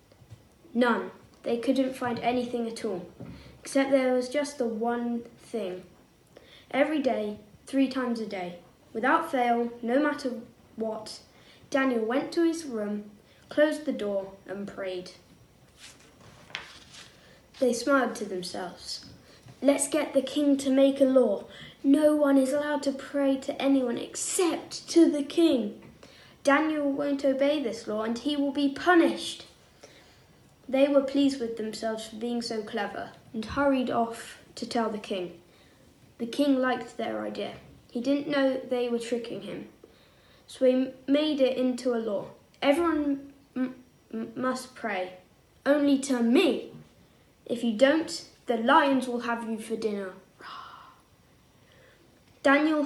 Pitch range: 235-280 Hz